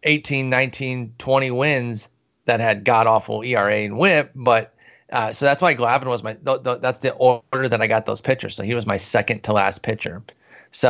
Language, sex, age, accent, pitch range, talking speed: English, male, 30-49, American, 110-130 Hz, 210 wpm